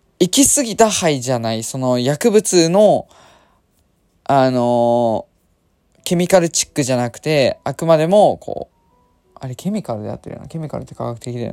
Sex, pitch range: male, 115-175 Hz